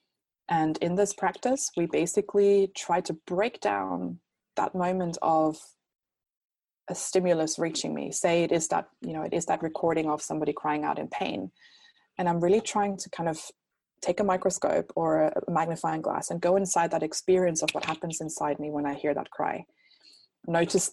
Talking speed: 180 wpm